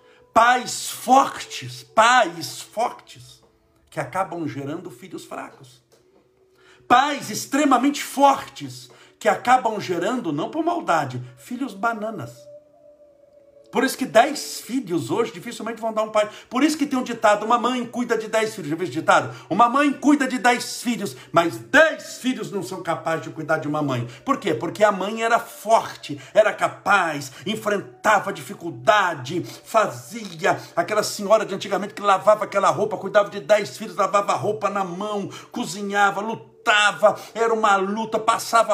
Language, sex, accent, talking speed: Portuguese, male, Brazilian, 155 wpm